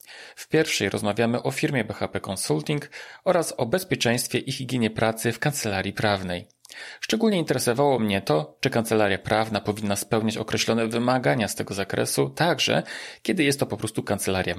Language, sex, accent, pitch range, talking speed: Polish, male, native, 100-125 Hz, 150 wpm